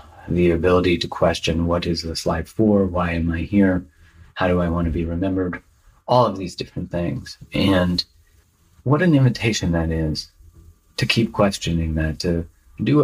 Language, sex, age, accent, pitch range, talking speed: English, male, 30-49, American, 85-105 Hz, 170 wpm